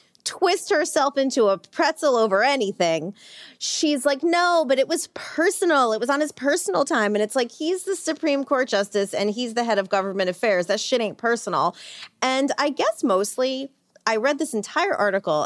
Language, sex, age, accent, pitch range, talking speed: English, female, 30-49, American, 205-305 Hz, 185 wpm